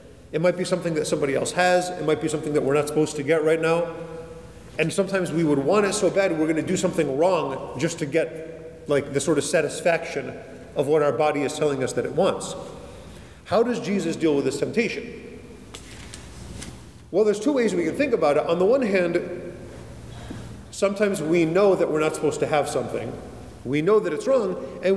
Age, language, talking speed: 40-59, English, 210 wpm